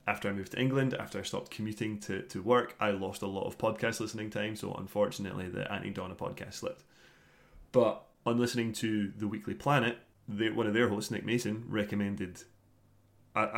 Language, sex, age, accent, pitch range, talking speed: English, male, 20-39, British, 100-115 Hz, 185 wpm